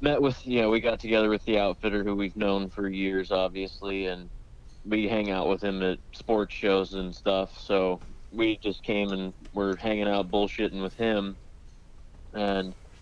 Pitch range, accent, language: 90-110 Hz, American, English